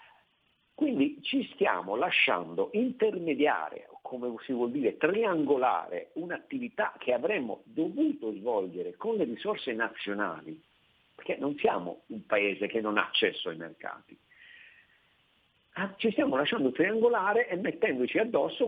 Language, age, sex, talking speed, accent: Italian, 50-69, male, 120 wpm, native